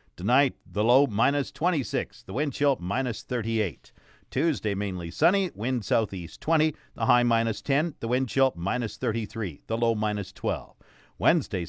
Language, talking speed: English, 150 wpm